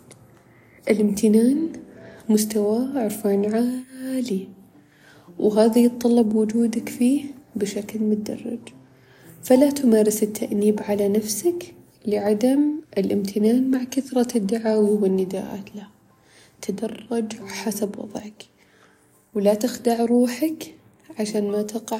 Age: 20-39